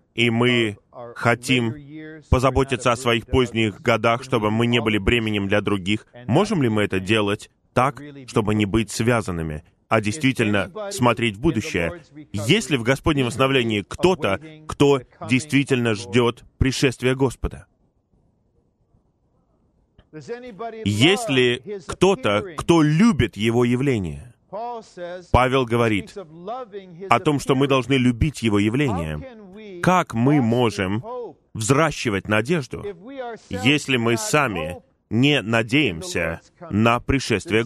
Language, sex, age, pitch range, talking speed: Russian, male, 20-39, 115-150 Hz, 110 wpm